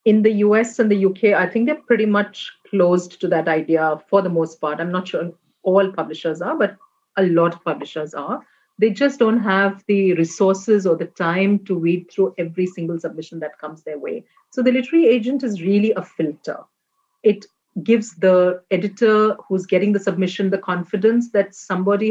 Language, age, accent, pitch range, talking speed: English, 40-59, Indian, 180-225 Hz, 190 wpm